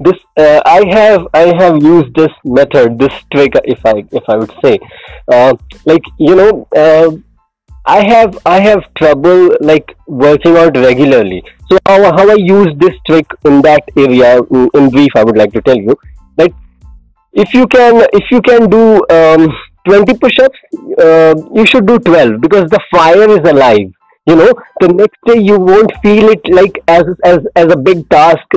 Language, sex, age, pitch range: Hindi, male, 20-39, 145-205 Hz